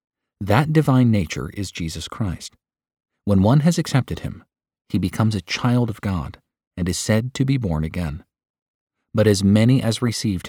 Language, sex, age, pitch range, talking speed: English, male, 40-59, 85-115 Hz, 165 wpm